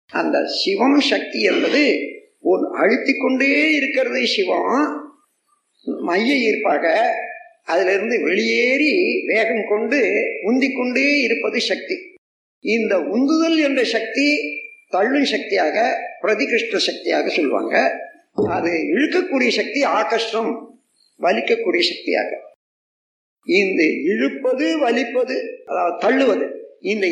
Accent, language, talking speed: native, Tamil, 90 wpm